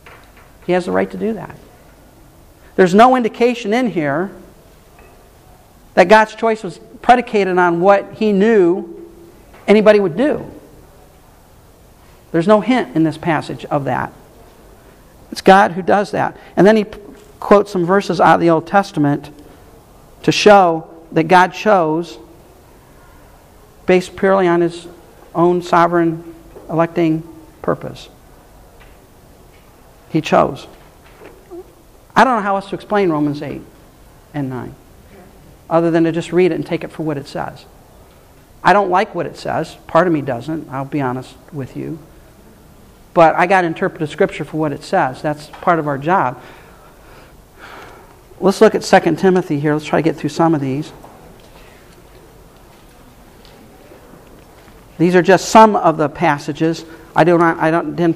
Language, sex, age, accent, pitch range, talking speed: English, male, 50-69, American, 155-195 Hz, 145 wpm